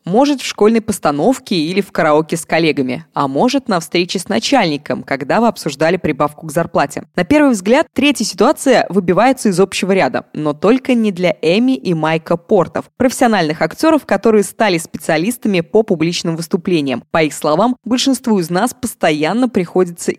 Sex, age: female, 20-39